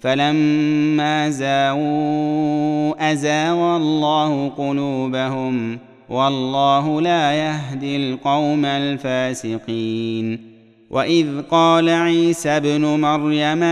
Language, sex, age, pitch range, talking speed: Arabic, male, 30-49, 130-150 Hz, 65 wpm